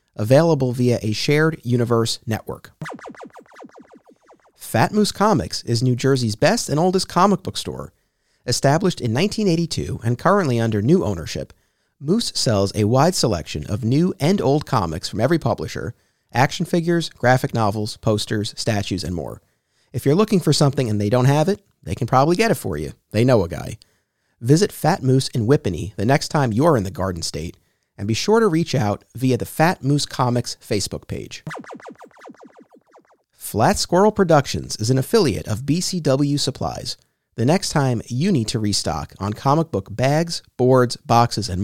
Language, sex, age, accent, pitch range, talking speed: English, male, 40-59, American, 110-155 Hz, 170 wpm